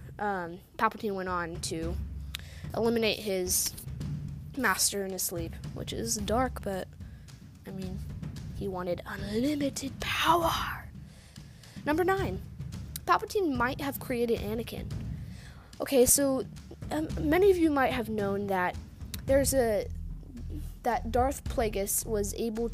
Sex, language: female, English